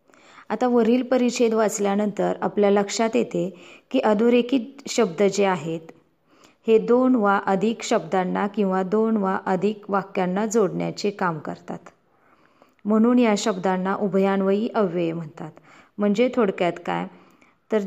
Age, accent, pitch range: 30-49, native, 190-225 Hz